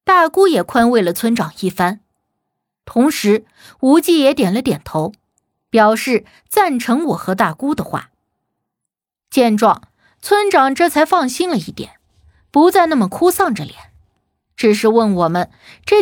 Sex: female